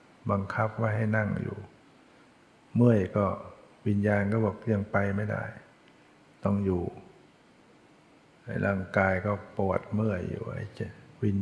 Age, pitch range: 60-79, 100-110 Hz